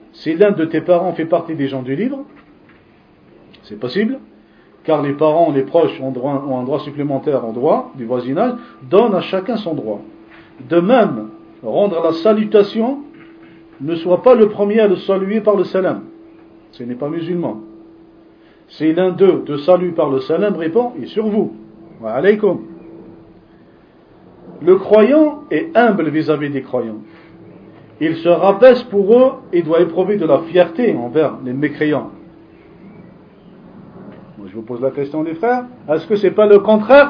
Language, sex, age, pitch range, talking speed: French, male, 50-69, 160-245 Hz, 165 wpm